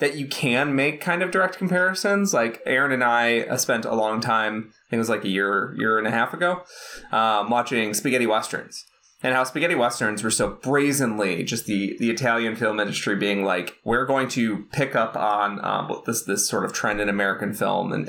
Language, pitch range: English, 110-135 Hz